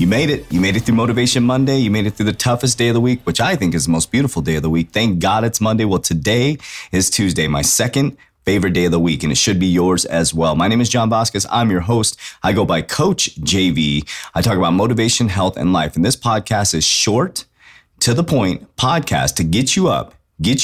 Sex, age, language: male, 30-49, English